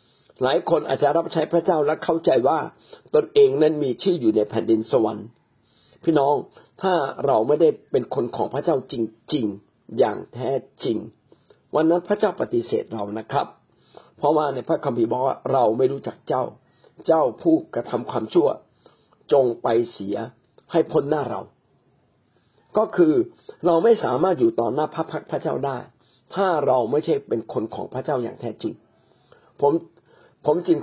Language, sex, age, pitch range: Thai, male, 50-69, 125-185 Hz